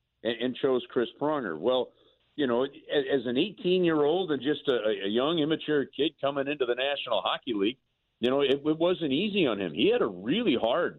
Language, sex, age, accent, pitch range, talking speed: English, male, 50-69, American, 115-155 Hz, 195 wpm